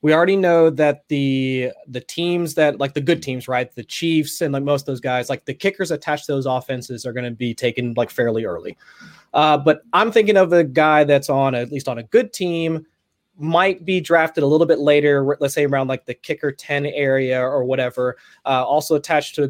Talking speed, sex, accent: 230 wpm, male, American